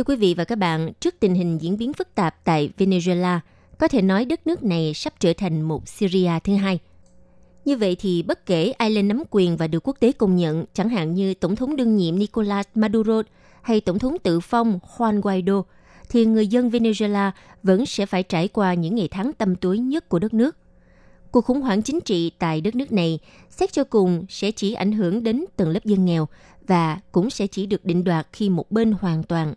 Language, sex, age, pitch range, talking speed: Vietnamese, female, 20-39, 170-225 Hz, 225 wpm